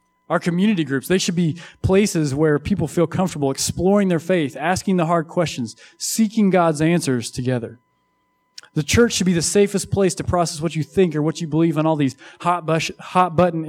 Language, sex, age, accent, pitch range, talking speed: English, male, 30-49, American, 135-185 Hz, 185 wpm